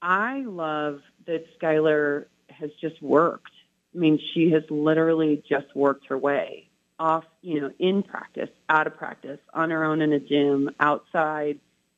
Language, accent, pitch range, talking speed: English, American, 145-160 Hz, 155 wpm